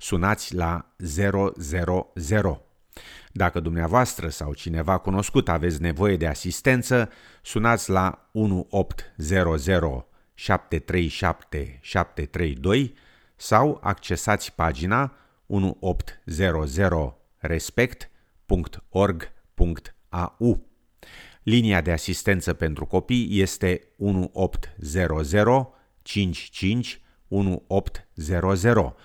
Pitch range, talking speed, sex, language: 85-105 Hz, 60 wpm, male, Romanian